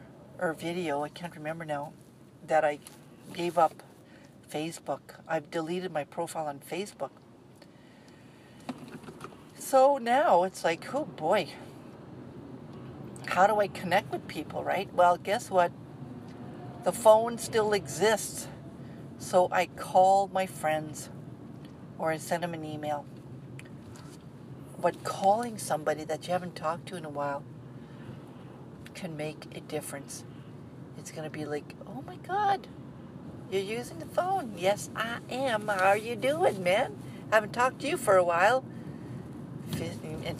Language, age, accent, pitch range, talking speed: English, 50-69, American, 150-190 Hz, 135 wpm